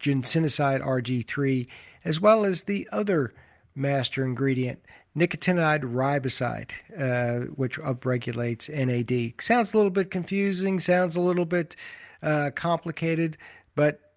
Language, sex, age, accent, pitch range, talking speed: English, male, 50-69, American, 125-155 Hz, 115 wpm